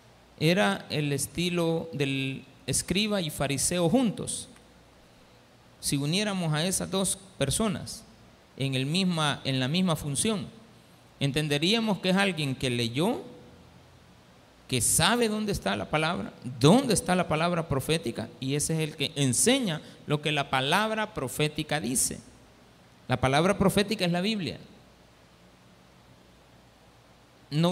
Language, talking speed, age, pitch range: Spanish, 115 wpm, 50-69, 130-195 Hz